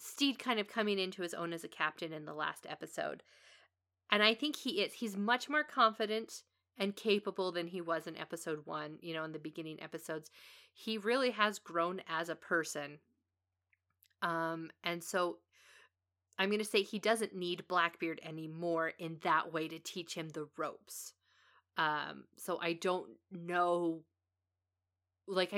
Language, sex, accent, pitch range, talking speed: English, female, American, 155-195 Hz, 165 wpm